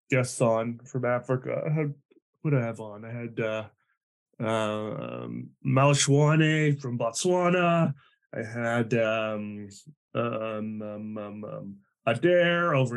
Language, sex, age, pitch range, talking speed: English, male, 20-39, 115-165 Hz, 115 wpm